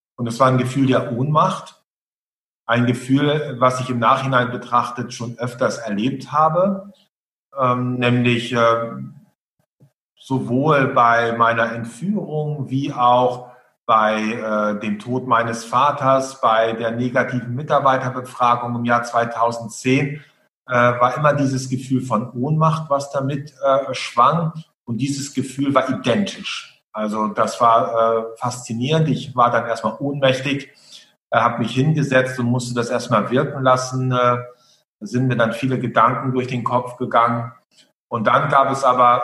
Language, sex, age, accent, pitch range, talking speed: German, male, 40-59, German, 115-135 Hz, 140 wpm